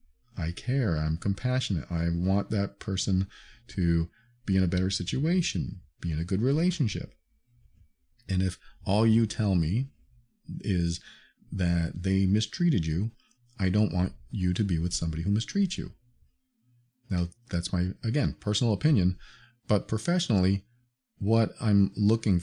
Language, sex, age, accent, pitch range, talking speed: English, male, 40-59, American, 90-130 Hz, 140 wpm